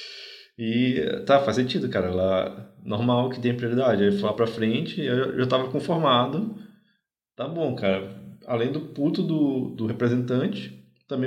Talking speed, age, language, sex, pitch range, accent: 145 wpm, 20-39, Portuguese, male, 110-160 Hz, Brazilian